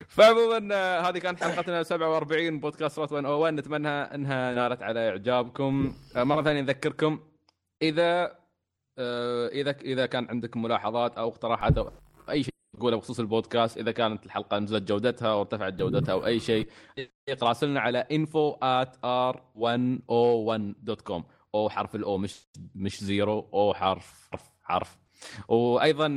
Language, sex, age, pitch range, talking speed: Arabic, male, 20-39, 110-135 Hz, 125 wpm